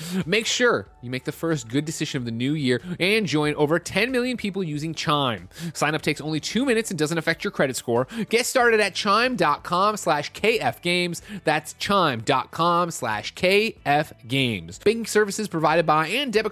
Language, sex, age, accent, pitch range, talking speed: English, male, 30-49, American, 120-195 Hz, 180 wpm